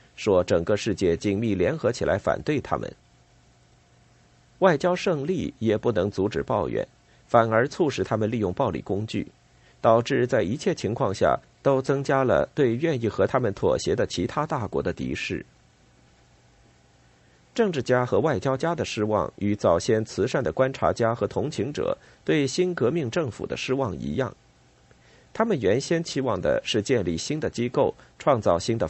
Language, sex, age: Chinese, male, 50-69